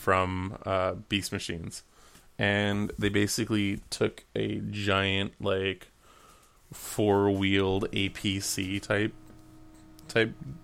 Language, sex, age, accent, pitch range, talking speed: English, male, 20-39, American, 95-105 Hz, 85 wpm